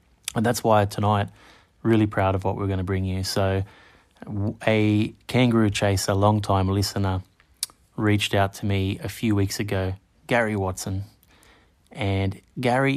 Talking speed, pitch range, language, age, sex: 145 wpm, 95-105 Hz, English, 30-49, male